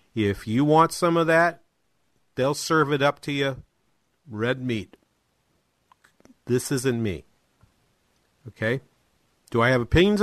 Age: 50-69